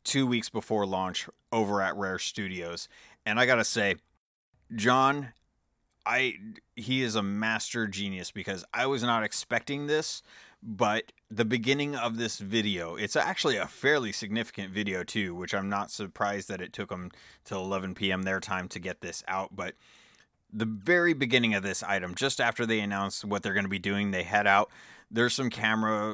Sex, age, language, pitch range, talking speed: male, 30-49, English, 95-115 Hz, 180 wpm